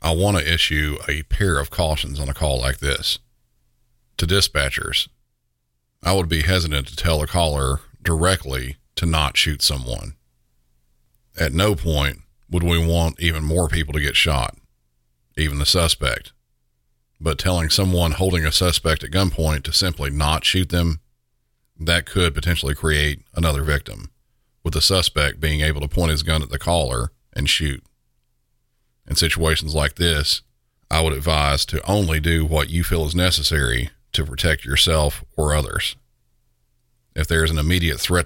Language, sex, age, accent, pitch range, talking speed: English, male, 40-59, American, 70-85 Hz, 160 wpm